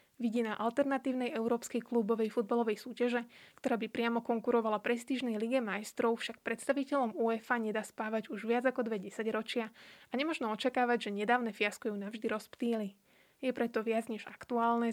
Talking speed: 150 wpm